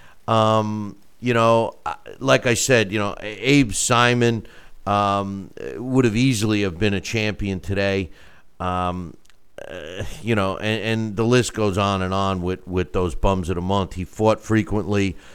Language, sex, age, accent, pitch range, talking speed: English, male, 50-69, American, 100-135 Hz, 160 wpm